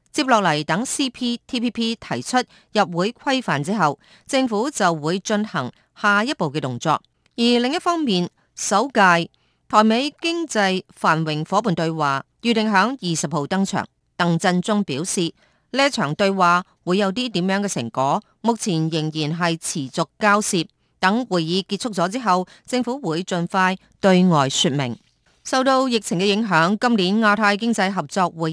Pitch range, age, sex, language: 170-230 Hz, 30-49, female, Chinese